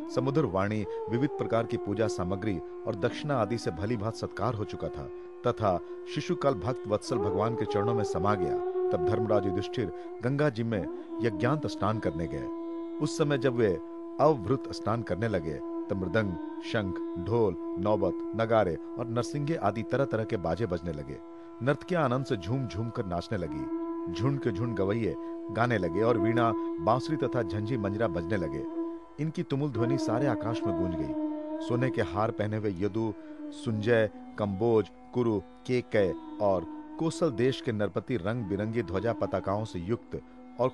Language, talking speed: Hindi, 145 wpm